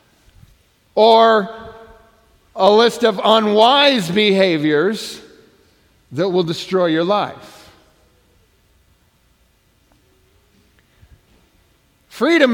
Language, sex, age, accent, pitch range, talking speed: English, male, 50-69, American, 170-225 Hz, 55 wpm